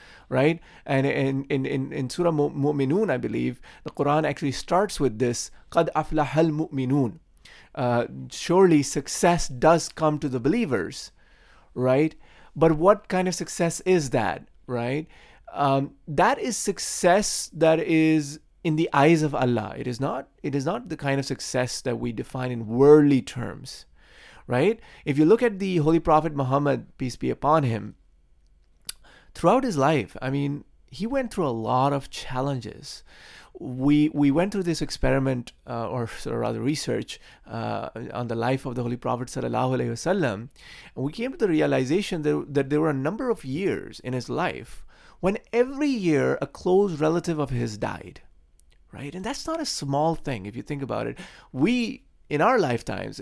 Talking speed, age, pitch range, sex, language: 170 wpm, 30-49, 125-165 Hz, male, English